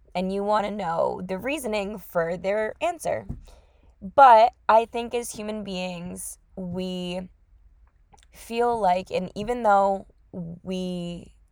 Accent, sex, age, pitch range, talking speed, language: American, female, 10-29, 170-215 Hz, 120 wpm, English